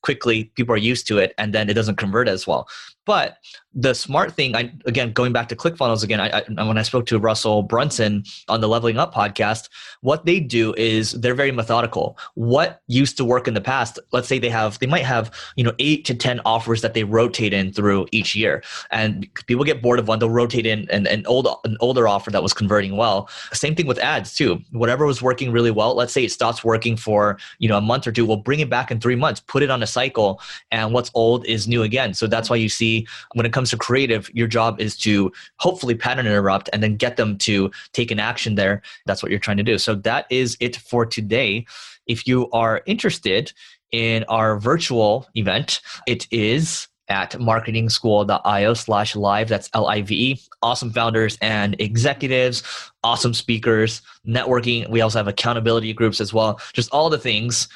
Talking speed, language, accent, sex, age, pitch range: 210 wpm, English, American, male, 20-39, 110-125 Hz